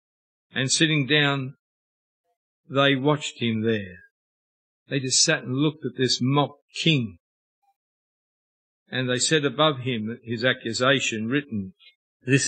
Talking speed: 120 wpm